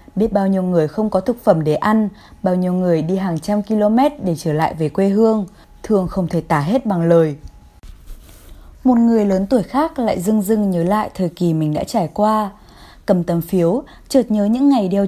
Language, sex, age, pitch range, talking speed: Vietnamese, female, 20-39, 170-230 Hz, 215 wpm